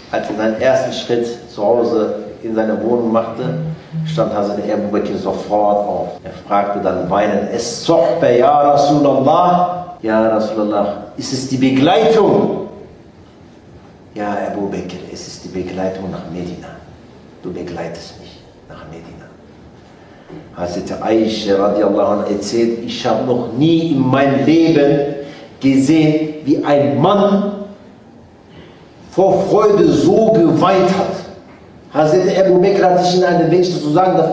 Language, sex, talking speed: German, male, 130 wpm